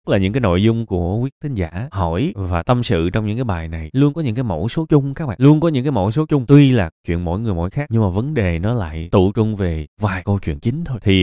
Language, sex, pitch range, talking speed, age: Vietnamese, male, 90-125 Hz, 305 wpm, 20-39